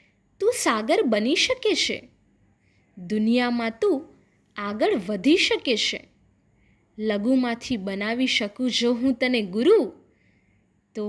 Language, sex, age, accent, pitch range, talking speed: Gujarati, female, 20-39, native, 200-265 Hz, 105 wpm